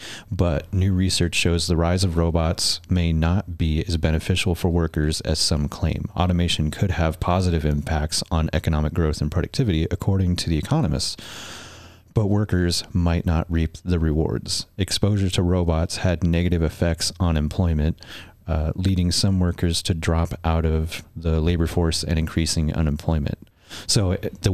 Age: 30-49